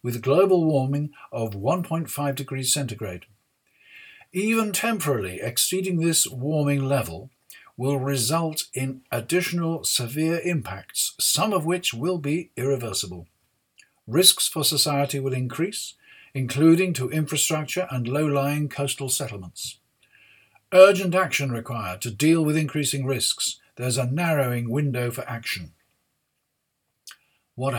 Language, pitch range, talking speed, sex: English, 120-160 Hz, 110 wpm, male